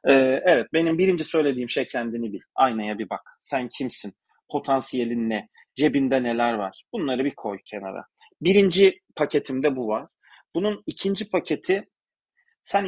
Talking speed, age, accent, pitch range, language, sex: 135 wpm, 40-59, native, 125-175 Hz, Turkish, male